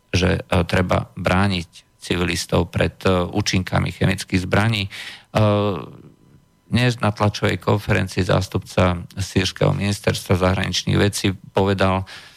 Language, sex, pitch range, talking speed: Slovak, male, 90-105 Hz, 85 wpm